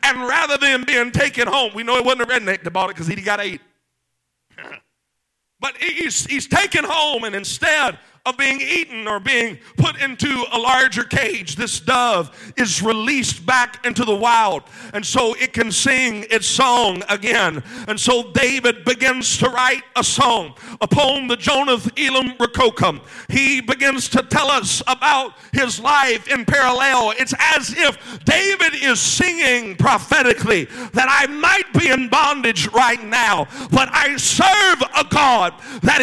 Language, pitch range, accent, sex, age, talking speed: English, 240-280 Hz, American, male, 50-69, 160 wpm